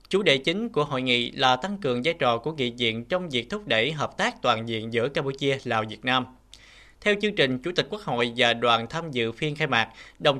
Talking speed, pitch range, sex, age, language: 240 wpm, 120-160 Hz, male, 20-39, Vietnamese